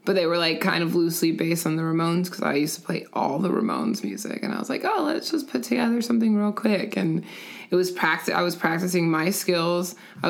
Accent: American